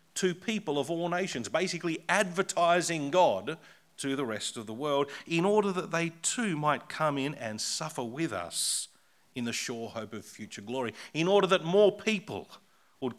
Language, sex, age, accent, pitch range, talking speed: English, male, 40-59, Australian, 105-165 Hz, 180 wpm